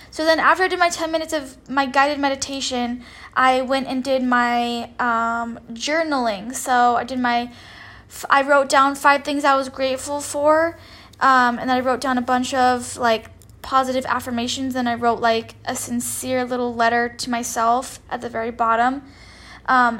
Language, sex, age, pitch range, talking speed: English, female, 10-29, 235-280 Hz, 175 wpm